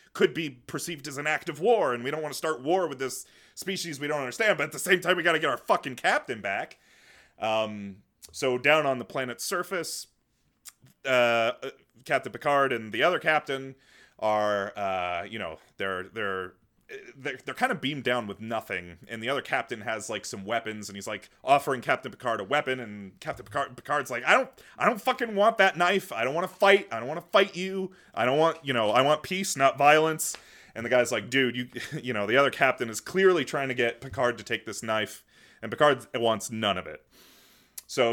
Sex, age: male, 30-49